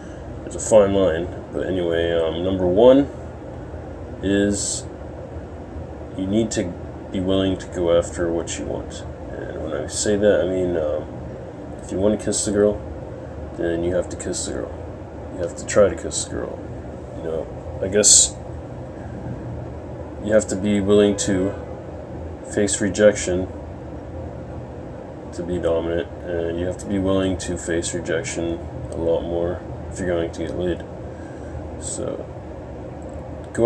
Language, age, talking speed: English, 30-49, 155 wpm